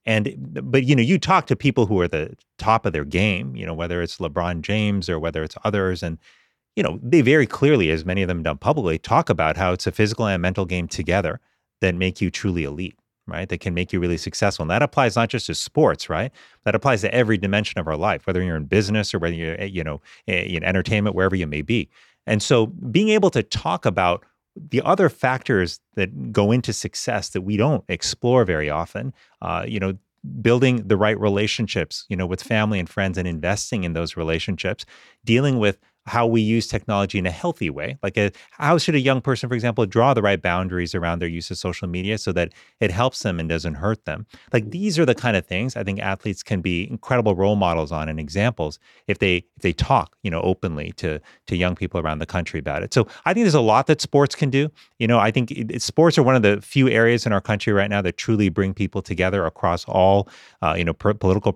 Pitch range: 90-115 Hz